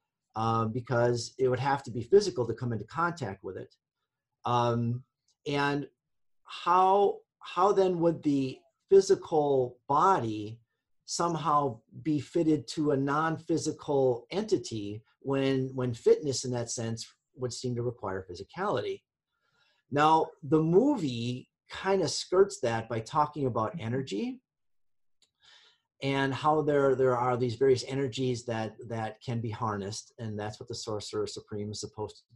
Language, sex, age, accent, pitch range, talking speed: English, male, 40-59, American, 115-150 Hz, 135 wpm